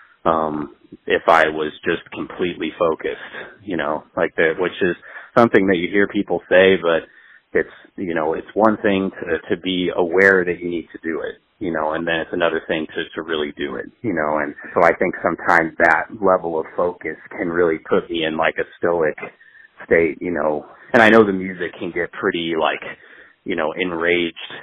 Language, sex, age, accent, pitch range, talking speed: English, male, 30-49, American, 80-100 Hz, 200 wpm